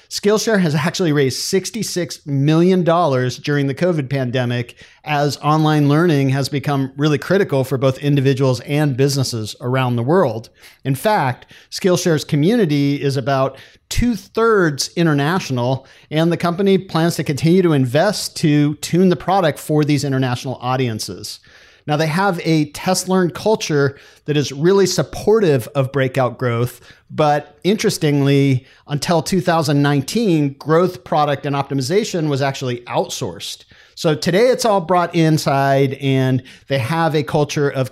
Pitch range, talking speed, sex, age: 135-170 Hz, 135 wpm, male, 50-69